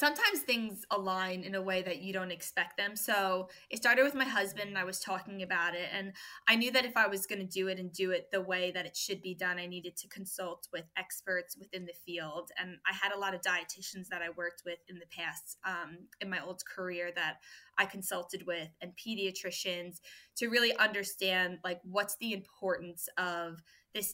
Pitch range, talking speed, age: 180-200 Hz, 215 wpm, 20-39